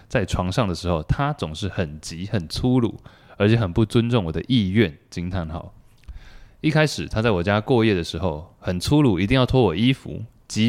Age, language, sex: 20-39, Chinese, male